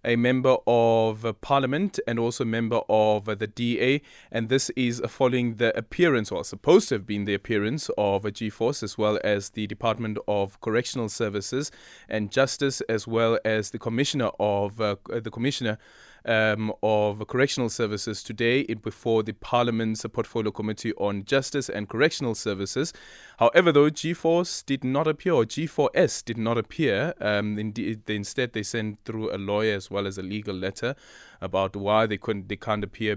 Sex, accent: male, South African